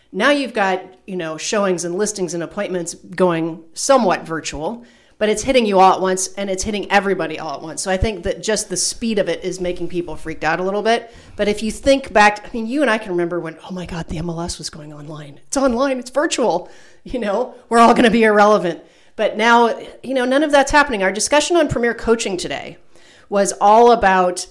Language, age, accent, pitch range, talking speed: English, 40-59, American, 175-225 Hz, 230 wpm